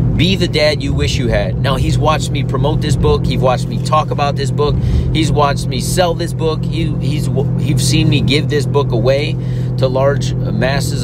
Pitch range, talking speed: 135-160 Hz, 200 wpm